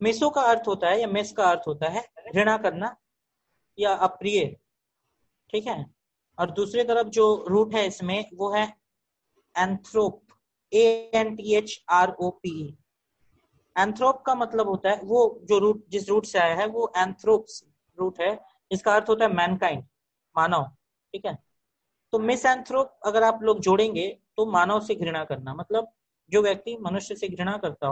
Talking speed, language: 165 wpm, Hindi